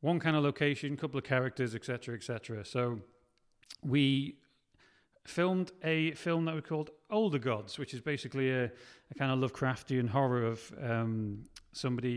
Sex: male